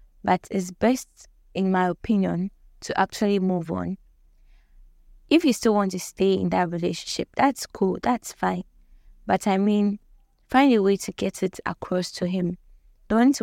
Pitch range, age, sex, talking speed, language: 175-205 Hz, 20-39, female, 160 wpm, English